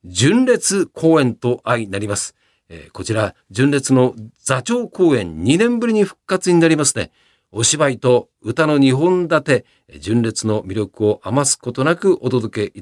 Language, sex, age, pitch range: Japanese, male, 50-69, 110-175 Hz